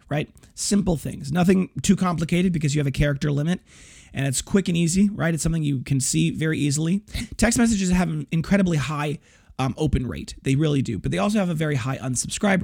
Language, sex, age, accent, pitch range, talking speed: English, male, 30-49, American, 135-180 Hz, 215 wpm